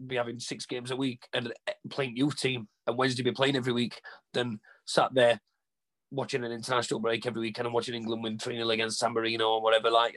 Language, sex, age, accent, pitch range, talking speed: English, male, 30-49, British, 120-150 Hz, 210 wpm